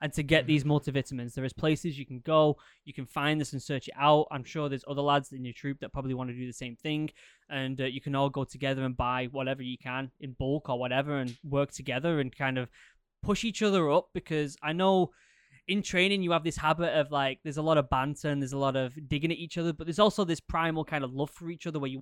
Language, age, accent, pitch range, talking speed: English, 10-29, British, 135-165 Hz, 270 wpm